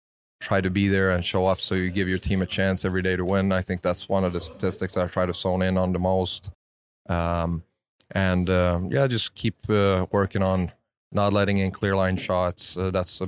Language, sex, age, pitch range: English, male, 20-39, 90-95 Hz